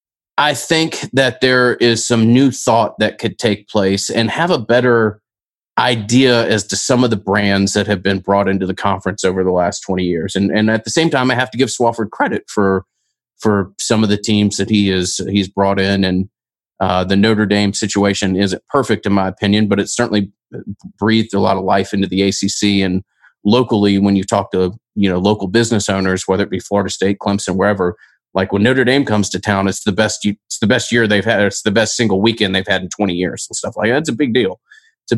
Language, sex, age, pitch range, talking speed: English, male, 30-49, 100-120 Hz, 230 wpm